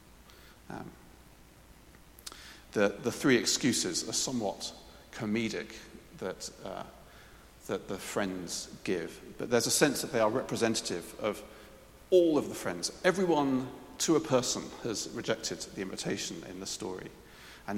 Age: 40-59